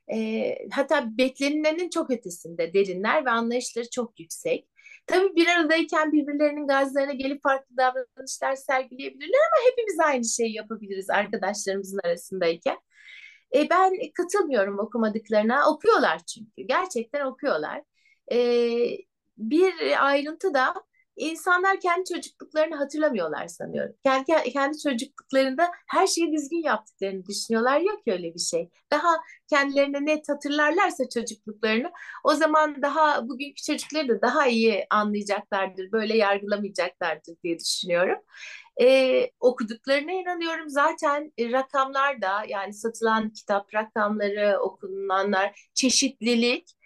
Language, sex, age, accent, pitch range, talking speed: Turkish, female, 60-79, native, 220-325 Hz, 110 wpm